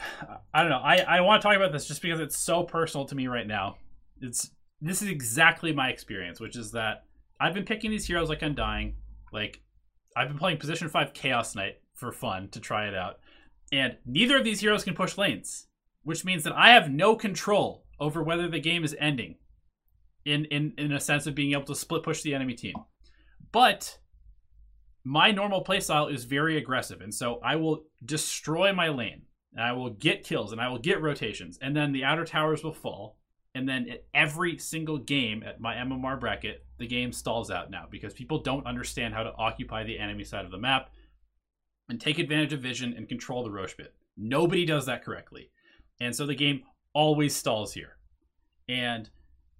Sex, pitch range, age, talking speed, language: male, 115-160 Hz, 20-39, 200 wpm, English